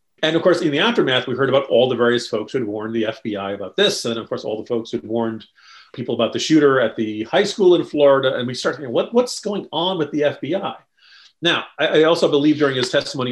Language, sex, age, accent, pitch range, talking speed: English, male, 40-59, American, 120-155 Hz, 255 wpm